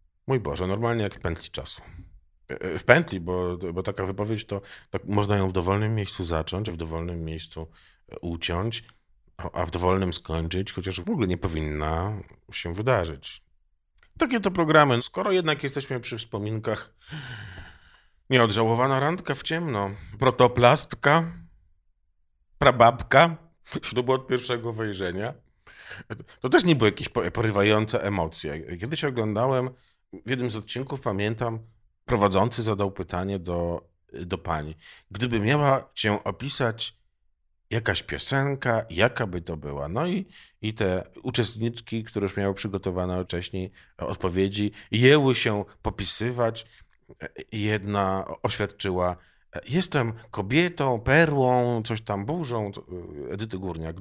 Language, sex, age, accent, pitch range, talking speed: Polish, male, 40-59, native, 90-125 Hz, 120 wpm